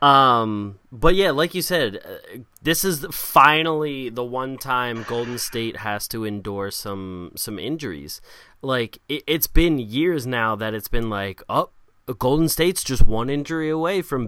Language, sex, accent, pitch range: English, male, American, 105-145 Hz